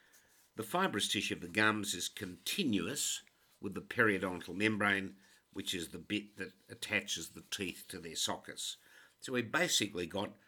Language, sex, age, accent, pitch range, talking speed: English, male, 60-79, Australian, 90-110 Hz, 155 wpm